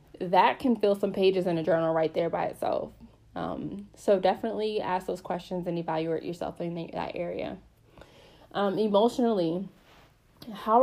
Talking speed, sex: 155 wpm, female